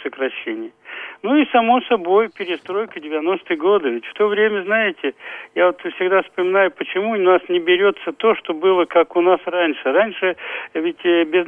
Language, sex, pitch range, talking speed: Russian, male, 160-230 Hz, 160 wpm